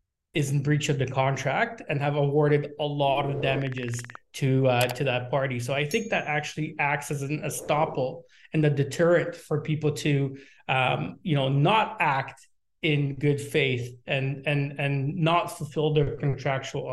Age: 30-49